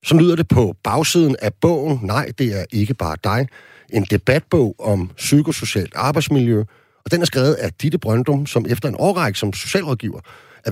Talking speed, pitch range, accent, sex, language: 180 wpm, 100-145 Hz, native, male, Danish